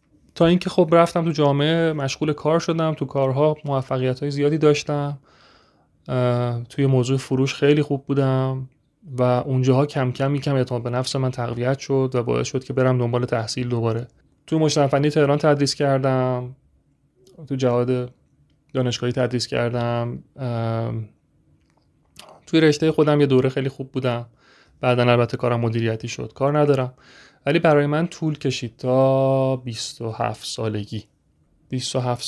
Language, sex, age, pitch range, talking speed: Persian, male, 30-49, 120-145 Hz, 135 wpm